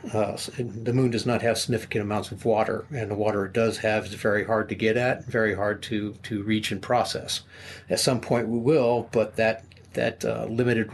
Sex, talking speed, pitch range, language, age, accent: male, 215 wpm, 105-115 Hz, English, 50-69, American